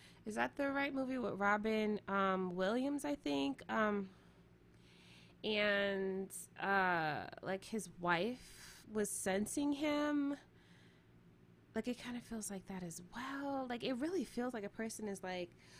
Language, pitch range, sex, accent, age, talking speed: English, 180-225 Hz, female, American, 20-39, 145 wpm